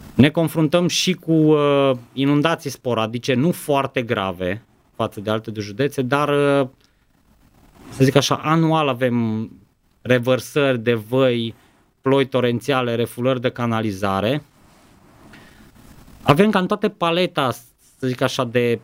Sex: male